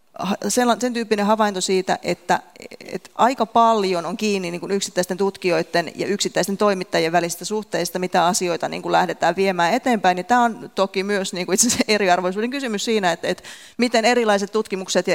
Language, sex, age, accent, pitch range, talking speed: Finnish, female, 30-49, native, 175-215 Hz, 160 wpm